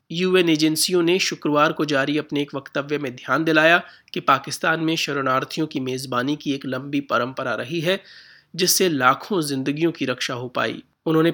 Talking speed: 170 wpm